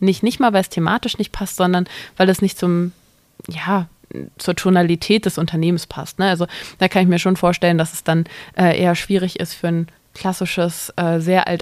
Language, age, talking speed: German, 20-39, 205 wpm